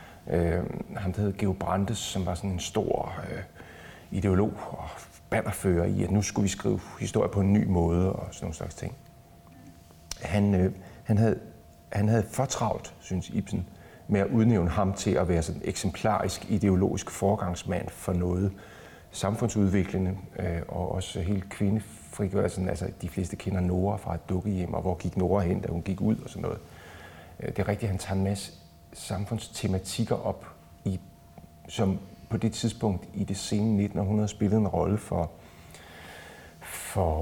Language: Danish